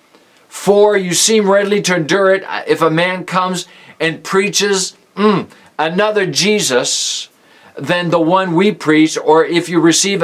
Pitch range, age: 155-205 Hz, 50-69